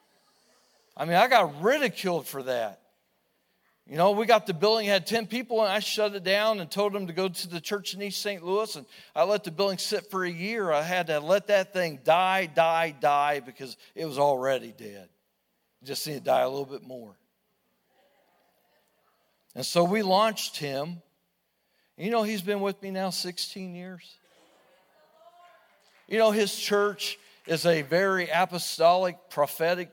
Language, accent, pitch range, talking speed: English, American, 160-200 Hz, 175 wpm